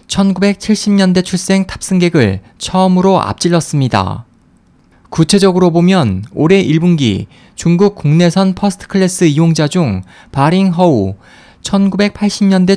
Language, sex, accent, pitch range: Korean, male, native, 150-190 Hz